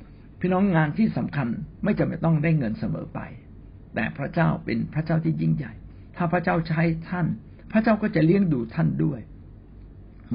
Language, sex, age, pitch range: Thai, male, 60-79, 115-170 Hz